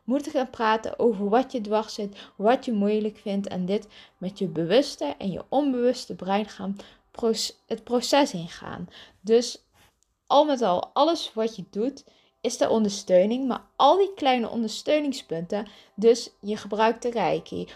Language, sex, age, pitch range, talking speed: Dutch, female, 20-39, 200-255 Hz, 160 wpm